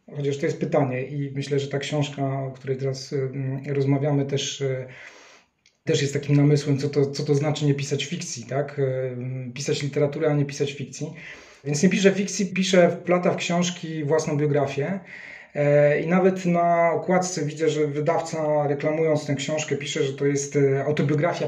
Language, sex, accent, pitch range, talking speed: Polish, male, native, 140-155 Hz, 155 wpm